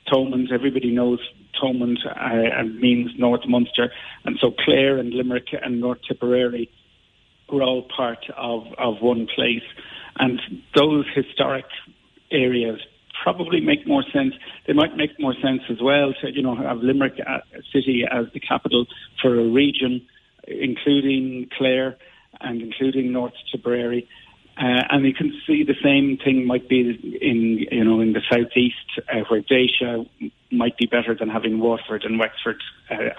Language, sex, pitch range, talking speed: English, male, 115-135 Hz, 155 wpm